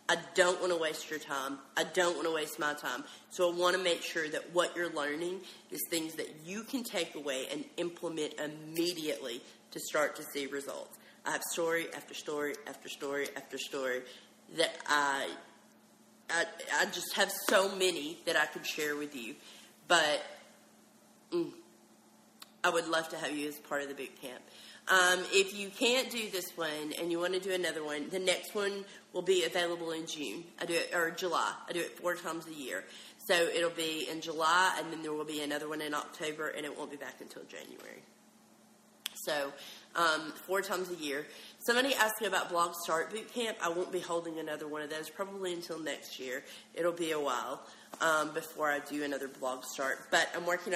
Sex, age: female, 30-49